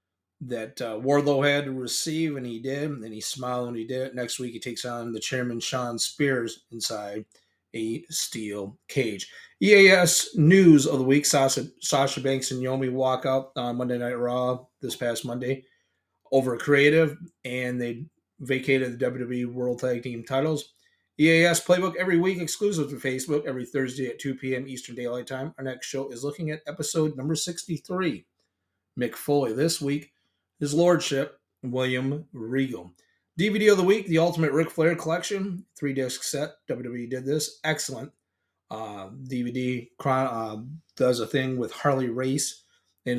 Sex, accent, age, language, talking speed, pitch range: male, American, 30-49, English, 160 wpm, 120-145 Hz